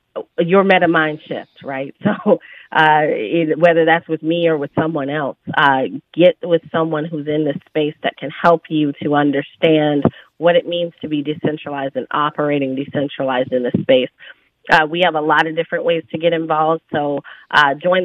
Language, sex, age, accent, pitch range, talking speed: English, female, 30-49, American, 150-170 Hz, 180 wpm